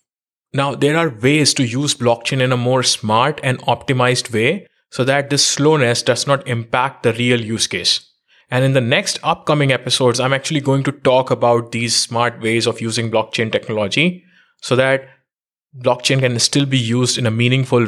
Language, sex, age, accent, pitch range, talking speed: English, male, 20-39, Indian, 115-140 Hz, 180 wpm